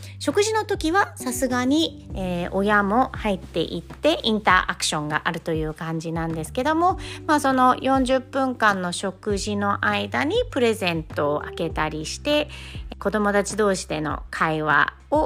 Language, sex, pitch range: Japanese, female, 165-230 Hz